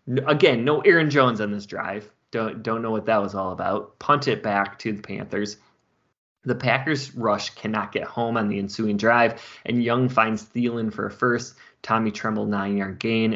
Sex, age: male, 20-39